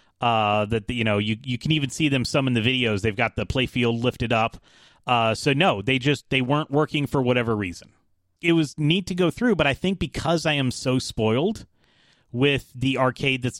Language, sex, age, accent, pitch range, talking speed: English, male, 30-49, American, 110-145 Hz, 220 wpm